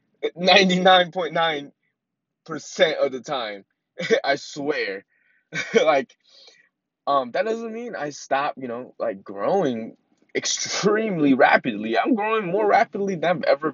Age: 20-39